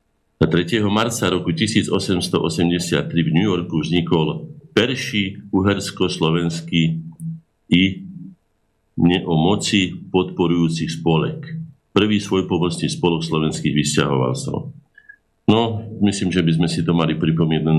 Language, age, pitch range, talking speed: Slovak, 50-69, 70-100 Hz, 100 wpm